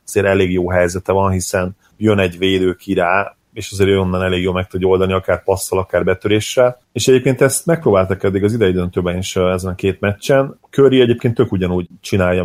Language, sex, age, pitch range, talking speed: Hungarian, male, 30-49, 95-110 Hz, 195 wpm